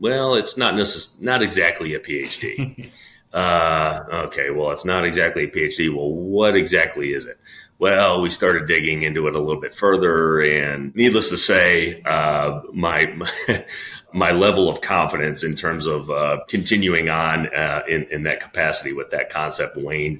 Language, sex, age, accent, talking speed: English, male, 30-49, American, 165 wpm